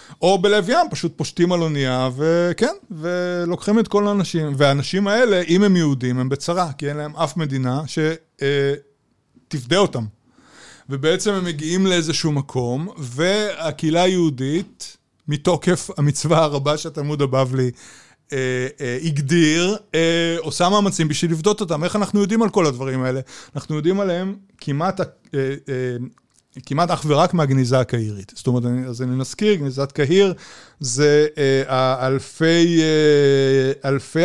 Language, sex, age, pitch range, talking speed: Hebrew, male, 30-49, 135-175 Hz, 140 wpm